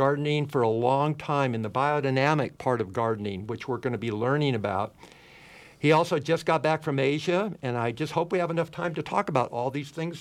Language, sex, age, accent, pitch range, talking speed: English, male, 60-79, American, 135-165 Hz, 230 wpm